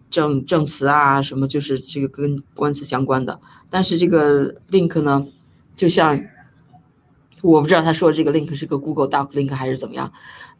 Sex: female